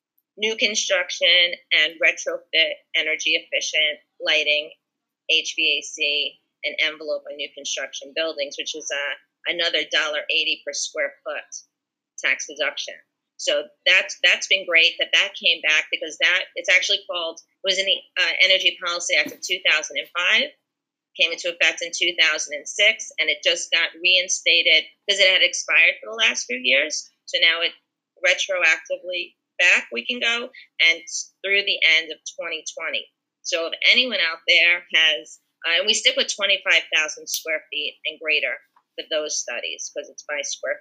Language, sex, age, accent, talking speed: English, female, 30-49, American, 155 wpm